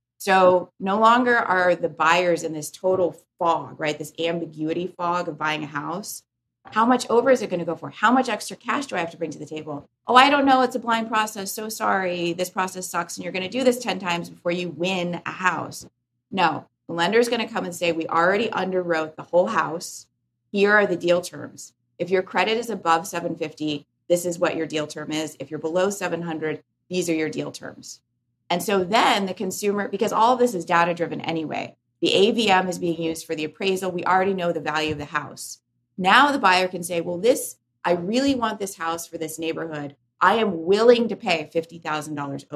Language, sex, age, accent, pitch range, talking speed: English, female, 30-49, American, 155-195 Hz, 220 wpm